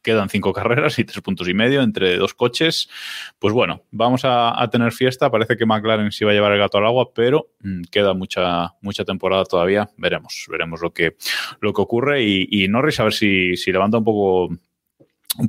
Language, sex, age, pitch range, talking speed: Spanish, male, 20-39, 95-130 Hz, 205 wpm